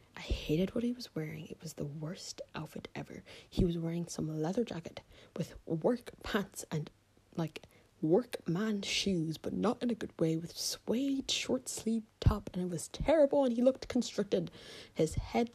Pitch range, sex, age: 160-200 Hz, female, 20-39